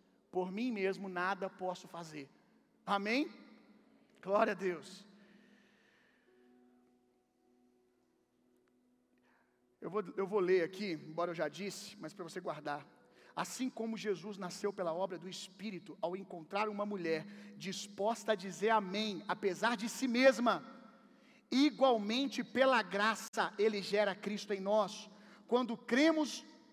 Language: Gujarati